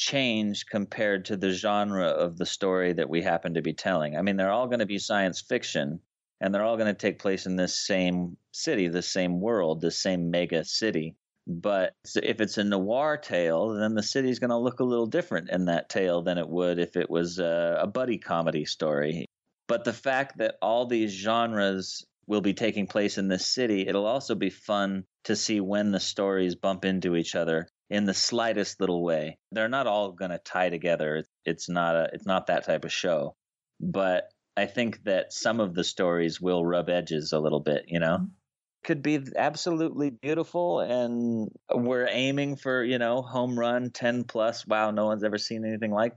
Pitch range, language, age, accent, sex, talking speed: 90-120 Hz, English, 30-49, American, male, 200 wpm